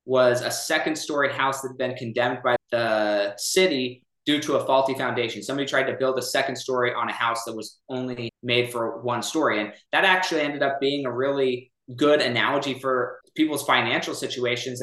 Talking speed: 195 wpm